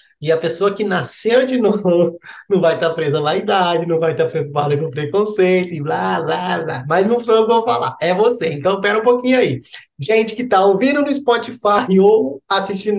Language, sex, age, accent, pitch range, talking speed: Portuguese, male, 20-39, Brazilian, 165-220 Hz, 210 wpm